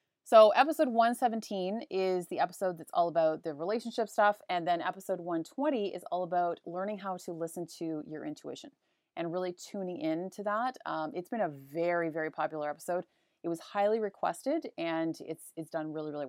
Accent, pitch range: American, 170-220 Hz